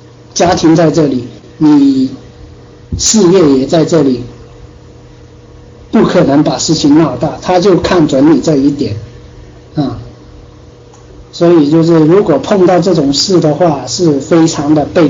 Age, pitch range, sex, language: 50-69, 140-175 Hz, male, Chinese